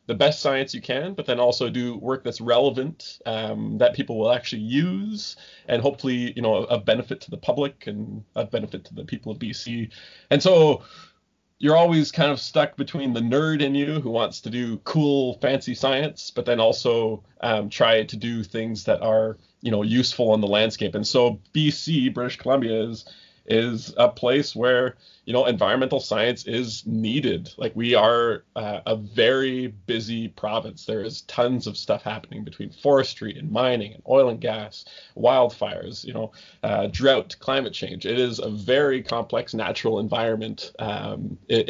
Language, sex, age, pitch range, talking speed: English, male, 20-39, 110-135 Hz, 180 wpm